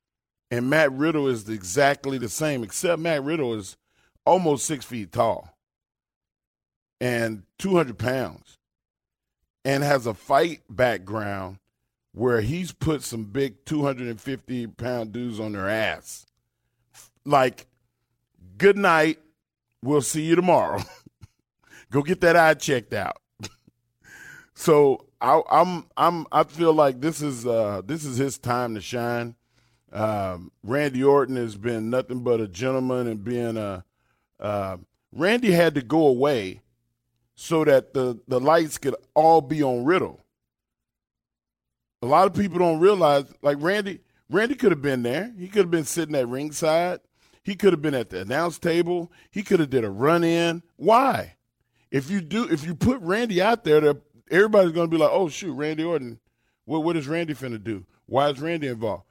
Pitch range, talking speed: 120-165 Hz, 160 wpm